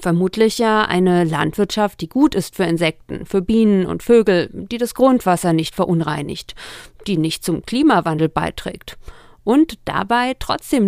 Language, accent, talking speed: German, German, 145 wpm